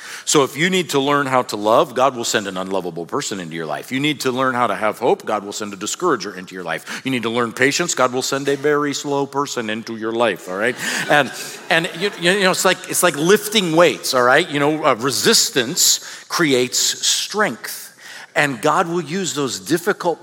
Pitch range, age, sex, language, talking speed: 125-195 Hz, 50-69, male, English, 225 wpm